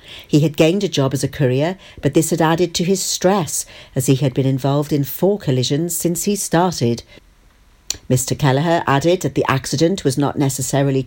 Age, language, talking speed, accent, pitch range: 50-69, English, 190 wpm, British, 135-185 Hz